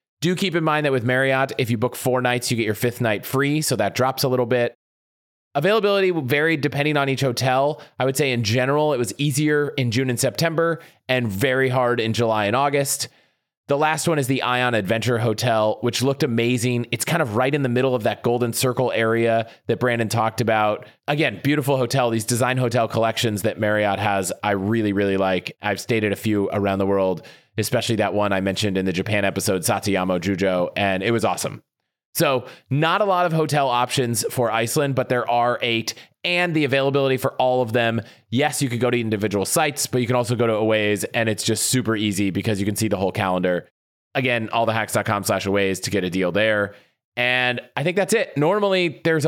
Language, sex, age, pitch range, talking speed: English, male, 30-49, 110-135 Hz, 215 wpm